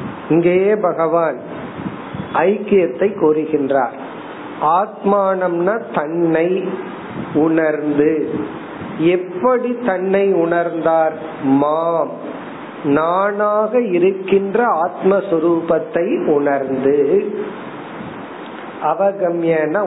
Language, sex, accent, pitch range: Tamil, male, native, 155-195 Hz